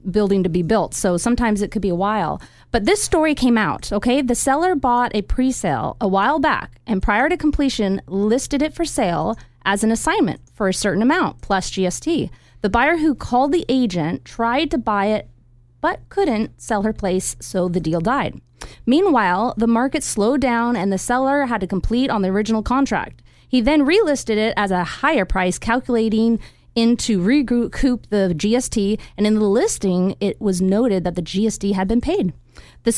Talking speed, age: 190 wpm, 30-49